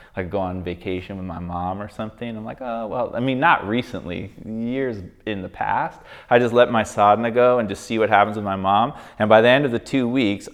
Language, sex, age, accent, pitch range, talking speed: English, male, 30-49, American, 100-130 Hz, 245 wpm